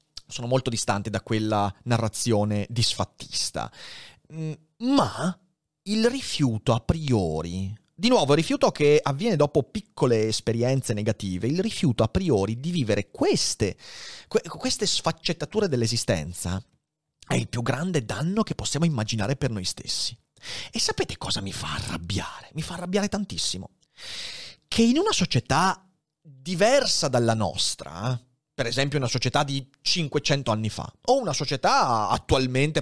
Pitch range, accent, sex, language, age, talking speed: 110-160 Hz, native, male, Italian, 30-49, 130 wpm